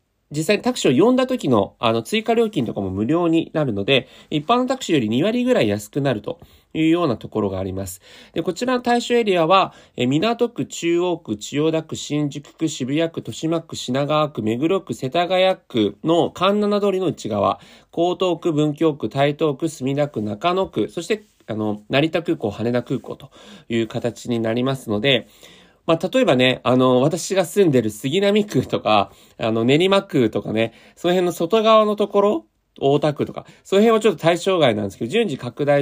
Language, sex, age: Japanese, male, 40-59